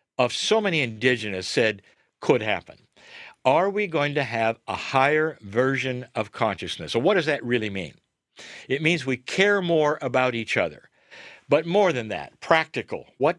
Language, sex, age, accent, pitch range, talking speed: English, male, 60-79, American, 120-155 Hz, 165 wpm